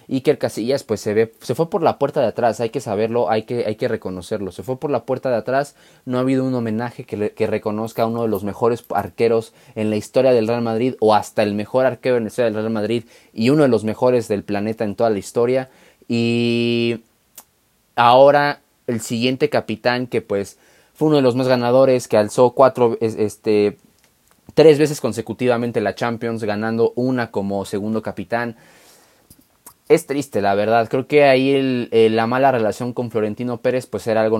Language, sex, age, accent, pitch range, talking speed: Spanish, male, 20-39, Mexican, 105-130 Hz, 205 wpm